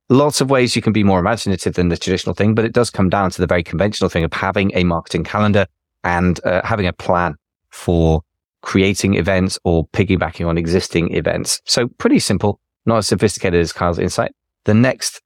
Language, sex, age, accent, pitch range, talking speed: English, male, 30-49, British, 85-105 Hz, 200 wpm